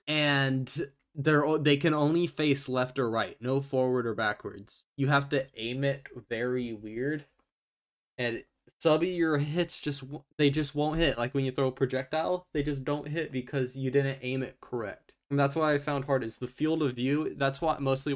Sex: male